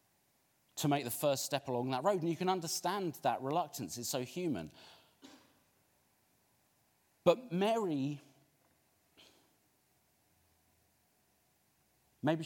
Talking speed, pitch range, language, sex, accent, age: 95 wpm, 105-140 Hz, English, male, British, 40-59